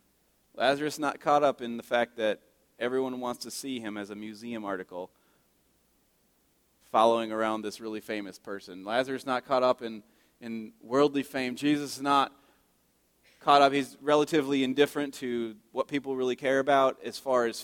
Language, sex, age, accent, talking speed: English, male, 30-49, American, 165 wpm